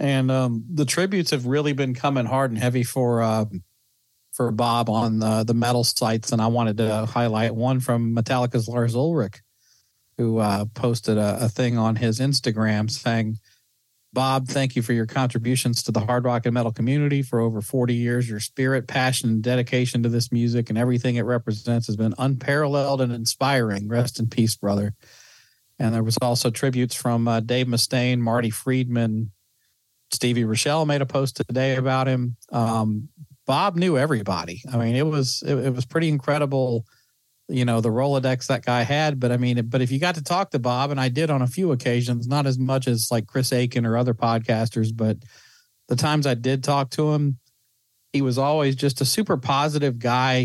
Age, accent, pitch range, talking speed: 40-59, American, 115-135 Hz, 190 wpm